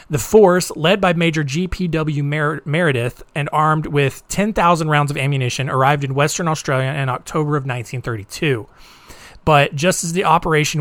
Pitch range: 135-165 Hz